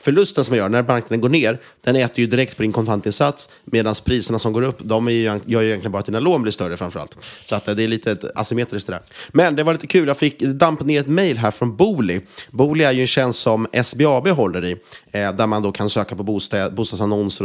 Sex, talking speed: male, 230 wpm